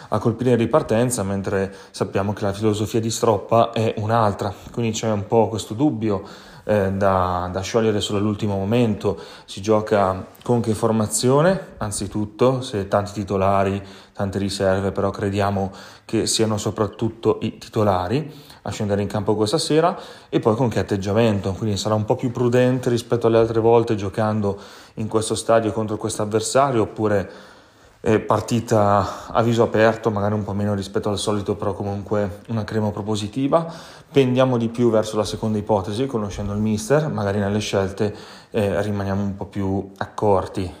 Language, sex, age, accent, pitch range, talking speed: Italian, male, 30-49, native, 100-115 Hz, 155 wpm